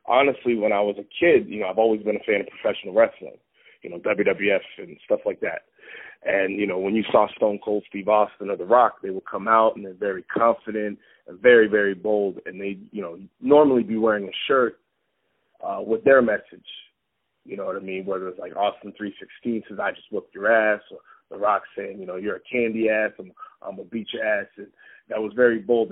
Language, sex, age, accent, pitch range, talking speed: English, male, 30-49, American, 100-120 Hz, 225 wpm